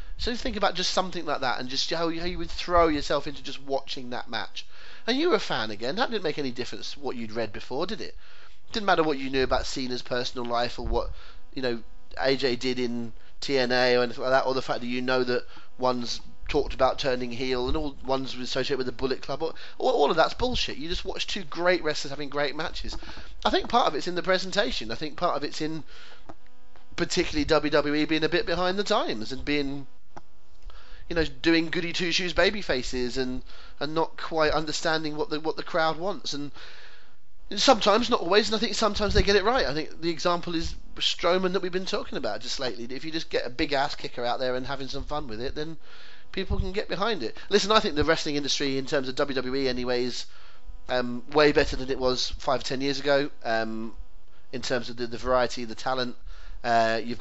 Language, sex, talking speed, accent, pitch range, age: English, male, 230 wpm, British, 125-170 Hz, 30-49